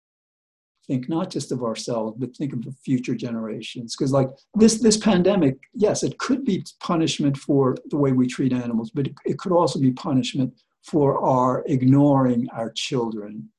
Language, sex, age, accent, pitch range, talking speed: English, male, 60-79, American, 125-145 Hz, 170 wpm